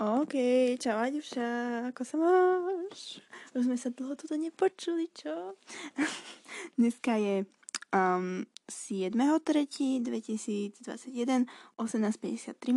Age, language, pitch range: 20-39, Turkish, 210-265 Hz